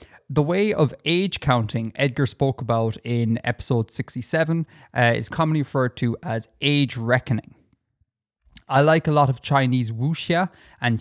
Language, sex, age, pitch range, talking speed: English, male, 20-39, 115-150 Hz, 145 wpm